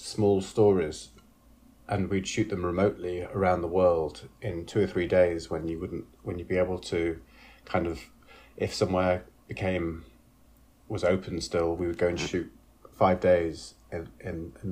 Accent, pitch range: British, 85-100 Hz